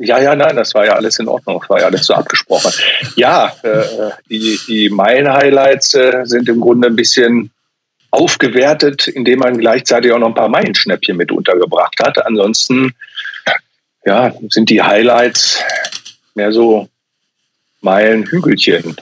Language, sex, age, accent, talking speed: German, male, 50-69, German, 145 wpm